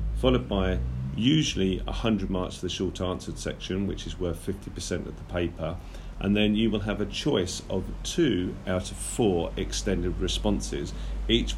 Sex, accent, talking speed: male, British, 165 wpm